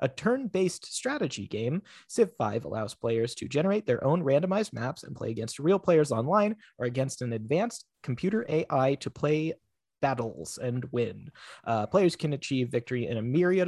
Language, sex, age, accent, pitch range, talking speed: English, male, 30-49, American, 120-170 Hz, 175 wpm